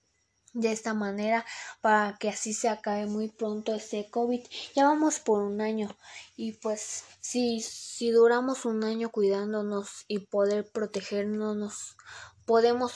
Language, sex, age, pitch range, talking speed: Spanish, female, 20-39, 205-230 Hz, 135 wpm